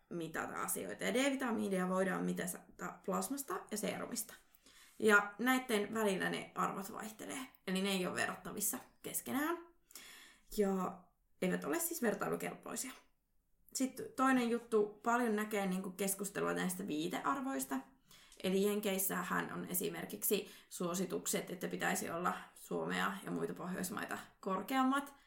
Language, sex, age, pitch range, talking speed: Finnish, female, 20-39, 190-240 Hz, 110 wpm